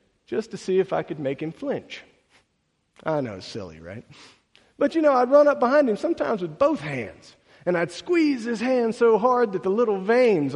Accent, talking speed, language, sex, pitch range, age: American, 205 wpm, English, male, 130-205 Hz, 50-69